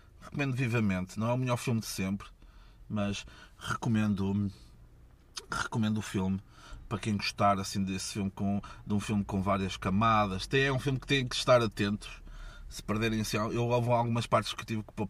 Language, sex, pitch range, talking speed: Portuguese, male, 100-130 Hz, 185 wpm